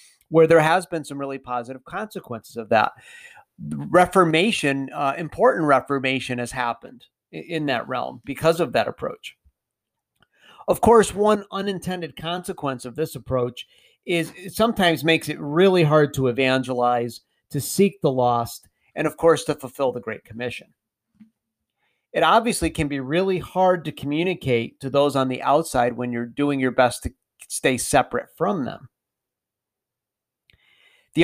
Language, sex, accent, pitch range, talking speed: English, male, American, 125-175 Hz, 150 wpm